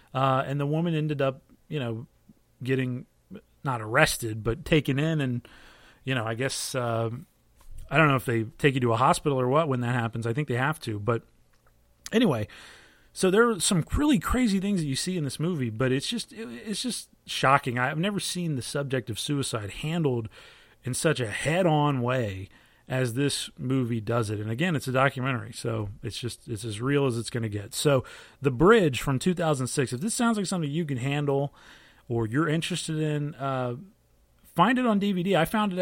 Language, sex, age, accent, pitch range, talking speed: English, male, 30-49, American, 120-155 Hz, 215 wpm